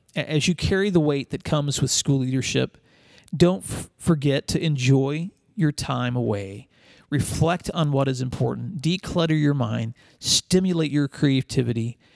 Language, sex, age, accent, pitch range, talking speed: English, male, 40-59, American, 125-155 Hz, 140 wpm